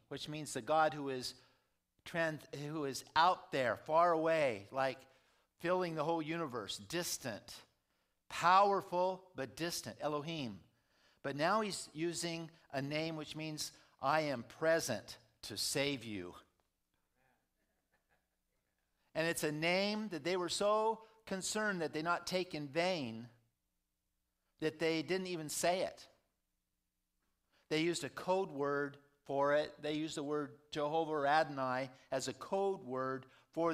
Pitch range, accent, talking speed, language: 140-180 Hz, American, 135 wpm, English